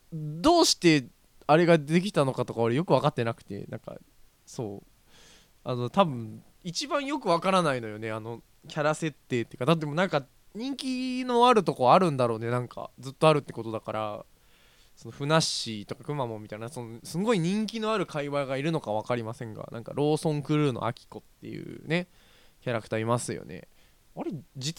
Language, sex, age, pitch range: Japanese, male, 20-39, 120-170 Hz